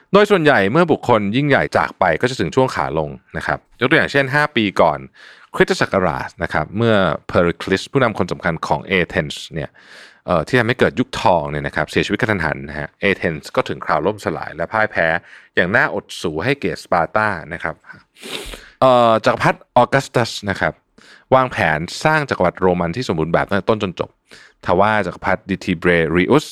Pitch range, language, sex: 90-135 Hz, Thai, male